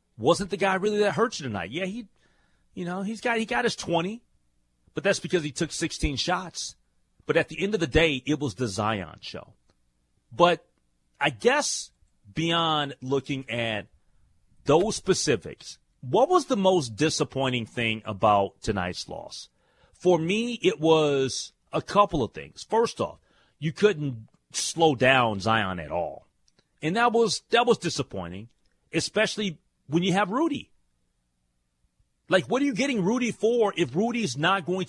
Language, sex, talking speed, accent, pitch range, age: English, male, 160 wpm, American, 115-195 Hz, 30-49